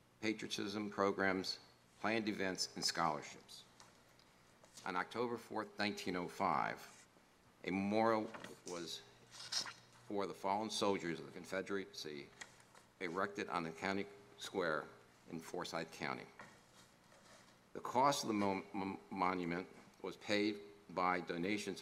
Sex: male